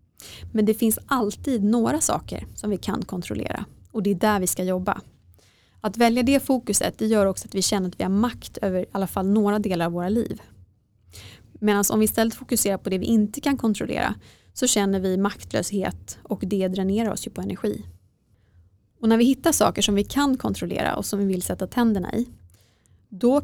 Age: 20-39